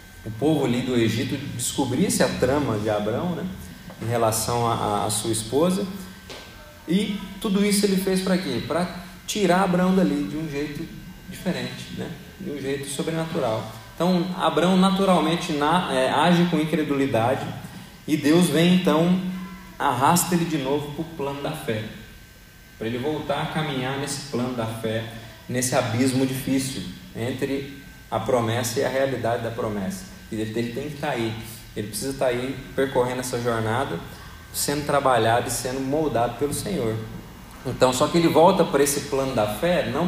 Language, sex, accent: Portuguese, male, Brazilian